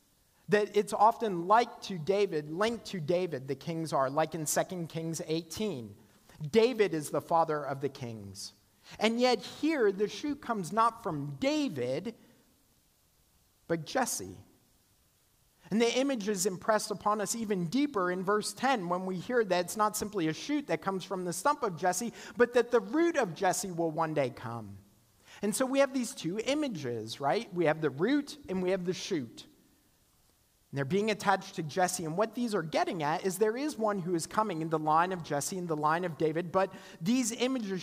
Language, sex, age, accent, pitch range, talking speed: English, male, 40-59, American, 155-220 Hz, 195 wpm